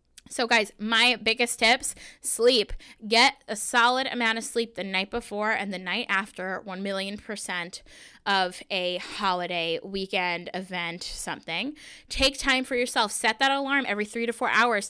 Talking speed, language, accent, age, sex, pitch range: 160 wpm, English, American, 20-39, female, 195-250 Hz